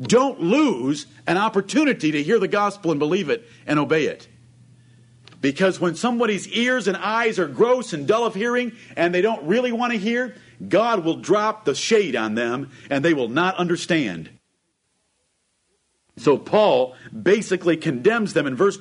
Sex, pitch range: male, 120-185 Hz